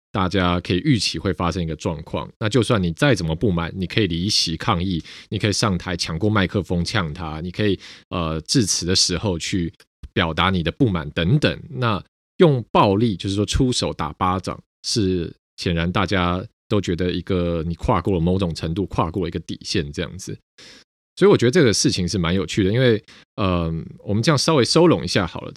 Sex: male